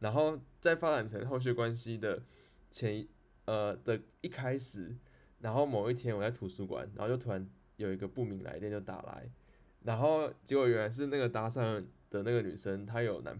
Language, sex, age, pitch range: Chinese, male, 20-39, 105-135 Hz